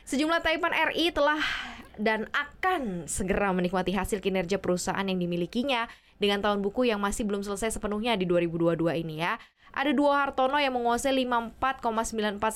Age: 20-39